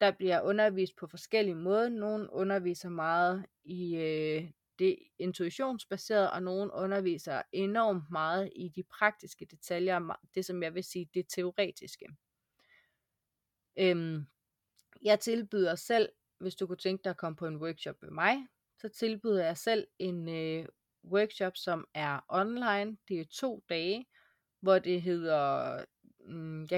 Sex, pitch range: female, 170-210 Hz